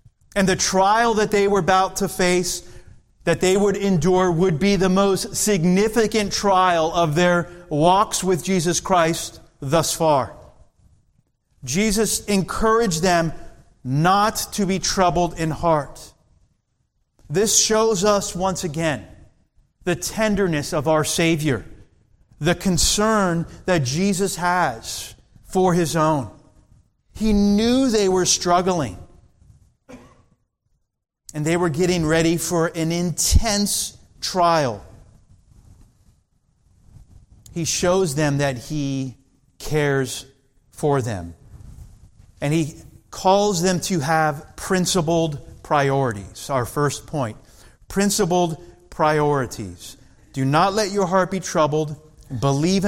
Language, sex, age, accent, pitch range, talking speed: English, male, 40-59, American, 130-185 Hz, 110 wpm